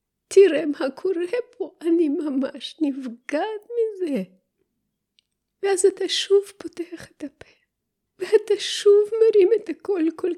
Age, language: 30-49, Hebrew